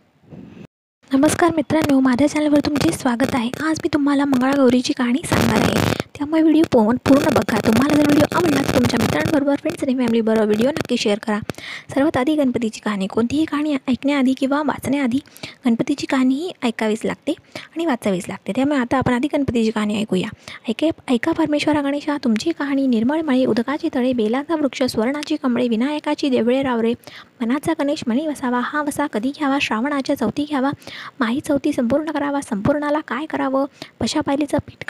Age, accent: 20-39, native